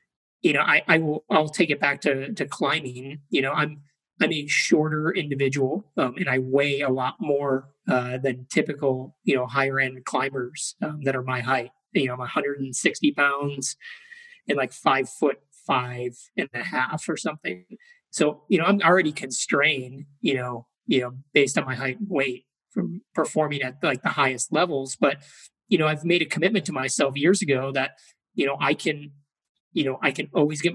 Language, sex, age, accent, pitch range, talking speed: English, male, 30-49, American, 130-160 Hz, 195 wpm